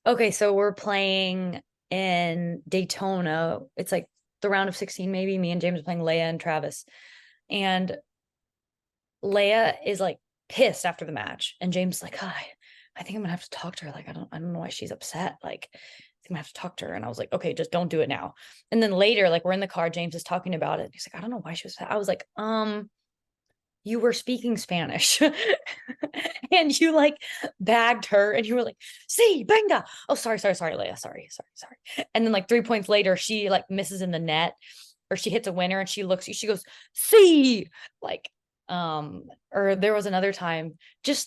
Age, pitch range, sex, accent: 20-39, 175-225 Hz, female, American